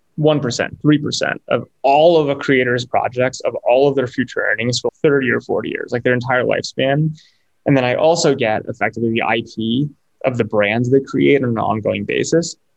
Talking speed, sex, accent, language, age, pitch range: 190 wpm, male, American, English, 20-39, 120-150 Hz